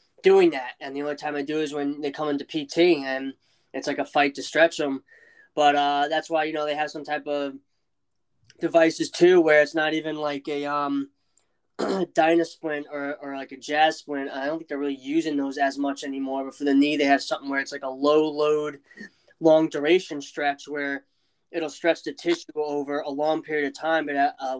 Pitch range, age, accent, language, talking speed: 140-155 Hz, 20-39, American, English, 220 wpm